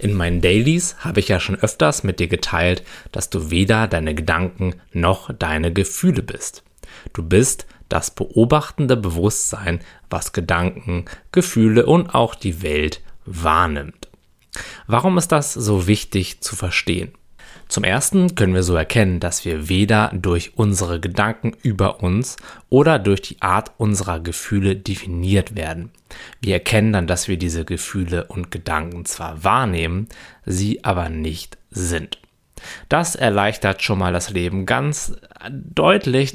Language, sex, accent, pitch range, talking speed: German, male, German, 90-115 Hz, 140 wpm